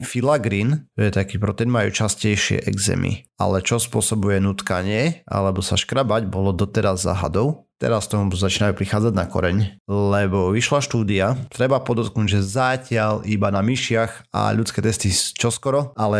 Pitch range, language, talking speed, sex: 100-120 Hz, Slovak, 145 wpm, male